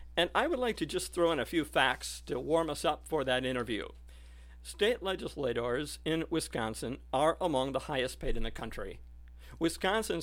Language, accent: English, American